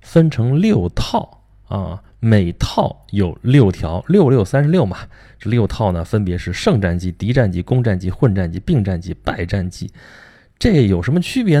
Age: 20-39